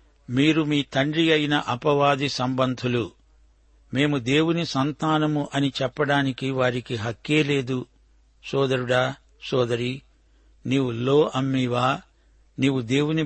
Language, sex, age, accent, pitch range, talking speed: Telugu, male, 60-79, native, 125-145 Hz, 95 wpm